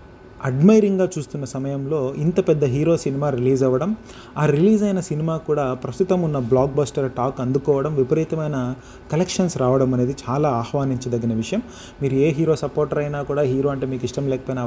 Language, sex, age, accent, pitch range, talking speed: Telugu, male, 30-49, native, 130-155 Hz, 155 wpm